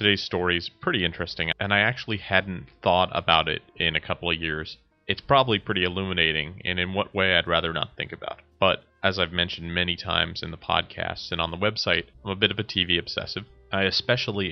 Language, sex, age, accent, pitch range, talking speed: English, male, 30-49, American, 90-105 Hz, 220 wpm